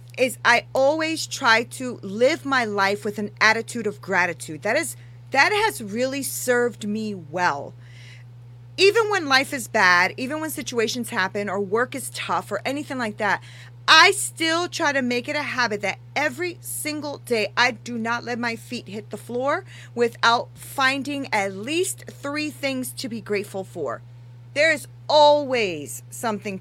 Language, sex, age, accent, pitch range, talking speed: English, female, 40-59, American, 170-275 Hz, 165 wpm